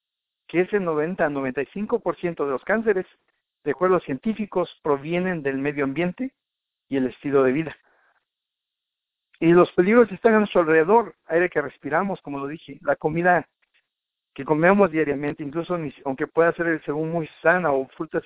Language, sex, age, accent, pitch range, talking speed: Spanish, male, 50-69, Mexican, 150-195 Hz, 165 wpm